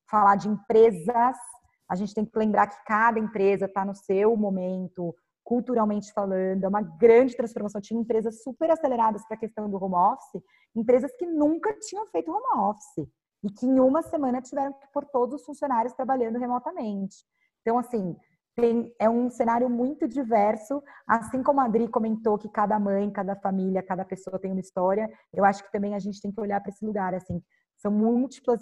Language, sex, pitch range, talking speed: Portuguese, female, 195-230 Hz, 185 wpm